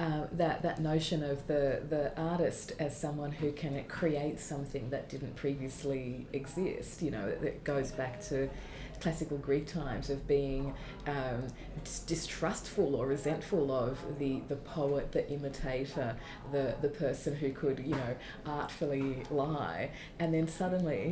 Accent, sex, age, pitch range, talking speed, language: Australian, female, 20-39, 140-160 Hz, 145 wpm, English